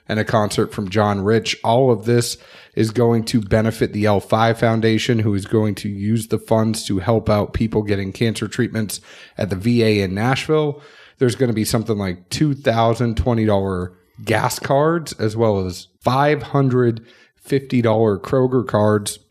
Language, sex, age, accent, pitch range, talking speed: English, male, 30-49, American, 105-130 Hz, 155 wpm